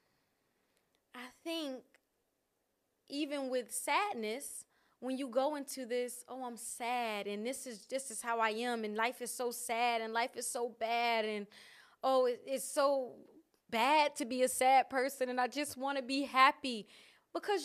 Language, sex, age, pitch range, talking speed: Amharic, female, 20-39, 230-285 Hz, 170 wpm